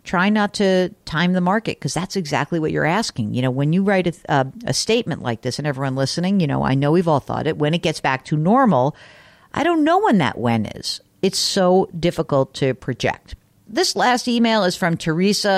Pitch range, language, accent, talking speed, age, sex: 140-215 Hz, English, American, 225 wpm, 50-69, female